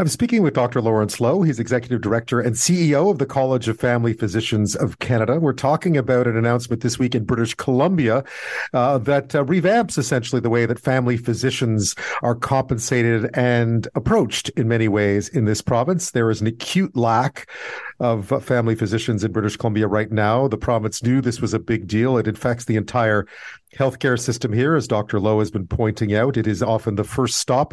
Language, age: English, 50-69